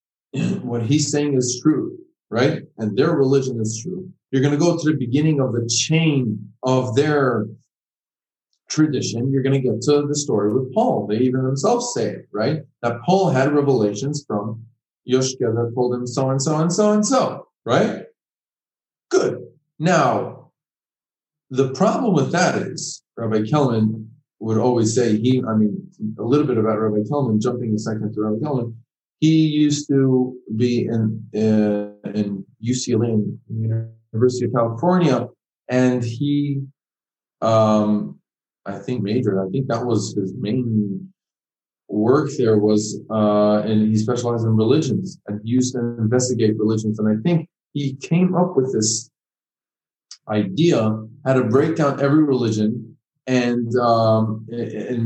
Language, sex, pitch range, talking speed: English, male, 110-145 Hz, 150 wpm